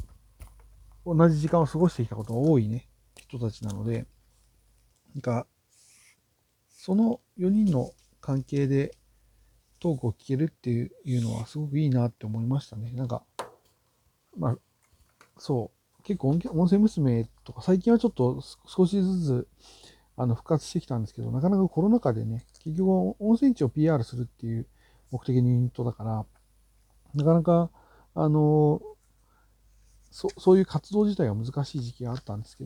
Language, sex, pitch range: Japanese, male, 115-160 Hz